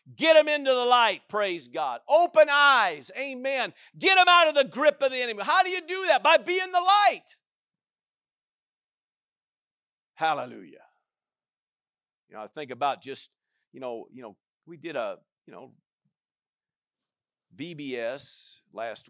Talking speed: 145 wpm